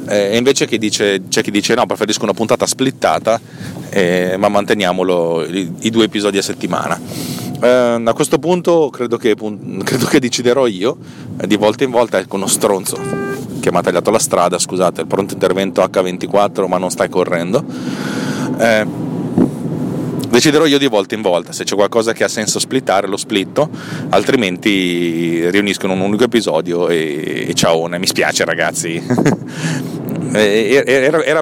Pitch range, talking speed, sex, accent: 100-135 Hz, 160 wpm, male, native